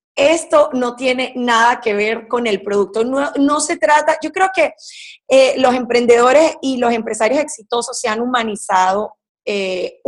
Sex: female